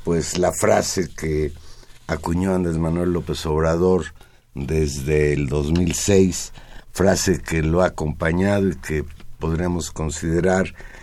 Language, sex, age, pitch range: Spanish, male, 50-69, 90-120 Hz